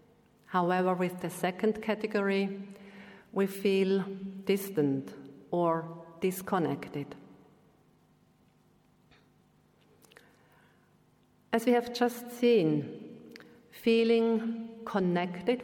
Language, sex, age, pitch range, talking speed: English, female, 50-69, 185-230 Hz, 65 wpm